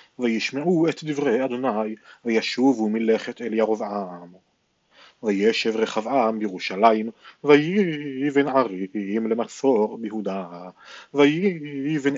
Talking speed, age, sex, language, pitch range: 80 wpm, 30-49, male, Hebrew, 105-135 Hz